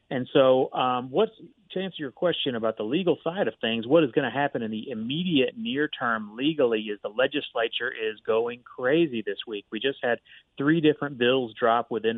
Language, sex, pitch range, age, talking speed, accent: English, male, 110-140 Hz, 30-49, 200 wpm, American